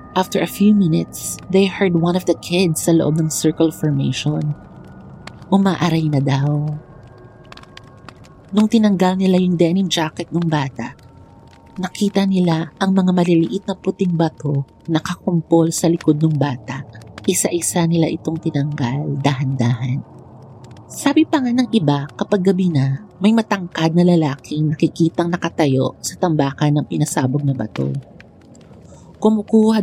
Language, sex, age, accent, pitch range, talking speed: Filipino, female, 40-59, native, 140-185 Hz, 130 wpm